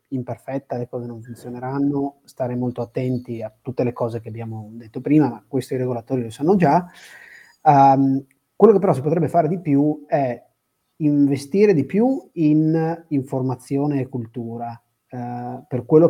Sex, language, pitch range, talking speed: male, Italian, 125-150 Hz, 155 wpm